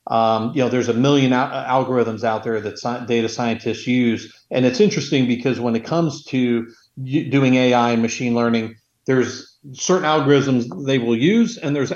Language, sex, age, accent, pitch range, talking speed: English, male, 40-59, American, 120-135 Hz, 185 wpm